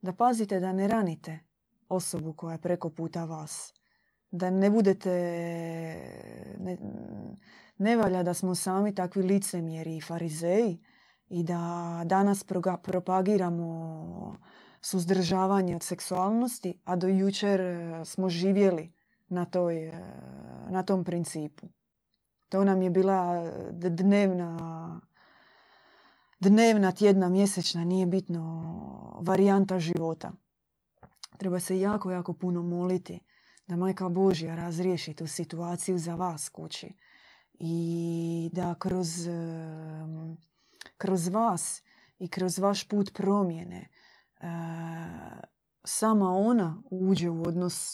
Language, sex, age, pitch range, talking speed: Croatian, female, 20-39, 170-195 Hz, 105 wpm